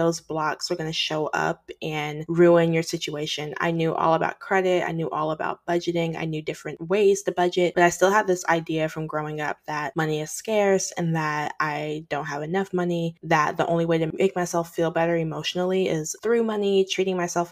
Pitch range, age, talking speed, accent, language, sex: 155-175 Hz, 20-39, 210 wpm, American, English, female